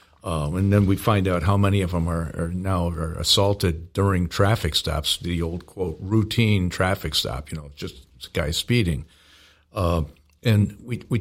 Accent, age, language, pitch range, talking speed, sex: American, 50-69, English, 90-105 Hz, 170 wpm, male